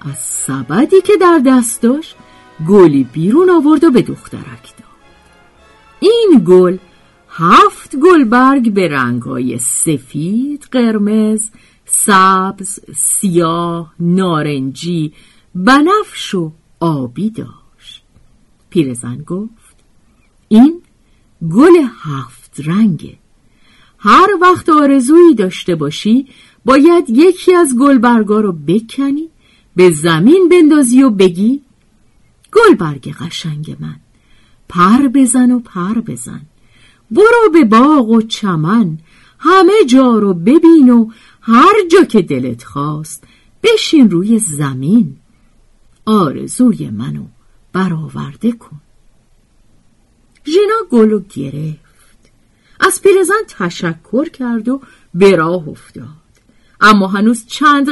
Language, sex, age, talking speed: Persian, female, 50-69, 95 wpm